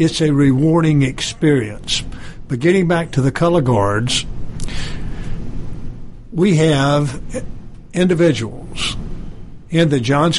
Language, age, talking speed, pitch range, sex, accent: English, 60-79, 100 wpm, 130-165 Hz, male, American